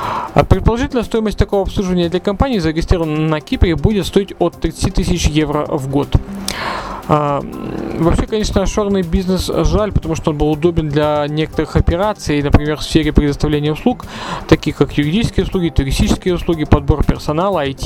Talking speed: 150 wpm